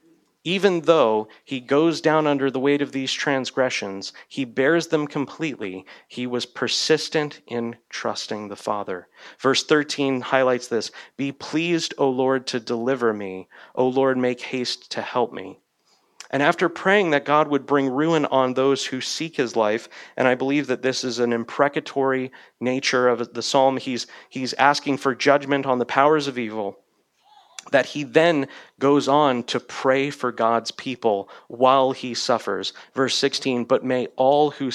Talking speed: 165 wpm